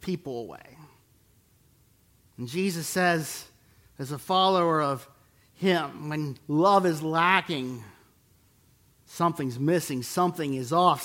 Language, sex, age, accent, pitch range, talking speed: English, male, 50-69, American, 130-190 Hz, 105 wpm